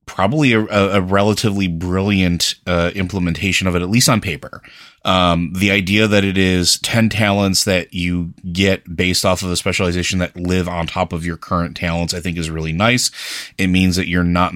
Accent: American